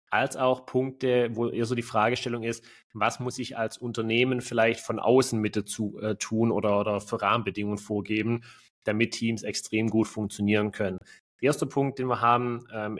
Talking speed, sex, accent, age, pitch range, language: 180 wpm, male, German, 30-49, 105-120 Hz, German